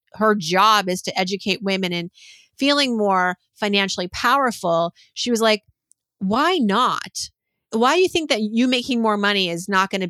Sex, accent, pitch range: female, American, 185-240 Hz